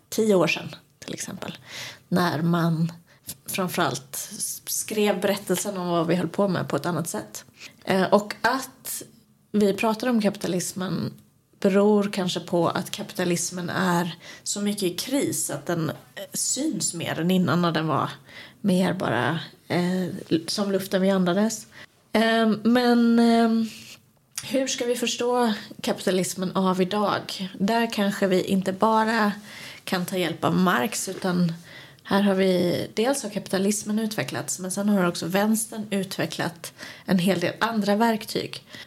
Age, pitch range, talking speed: 20-39, 175-205 Hz, 135 wpm